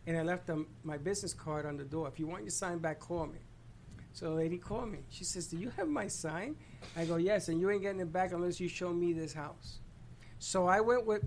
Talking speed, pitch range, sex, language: 260 wpm, 155-190 Hz, male, English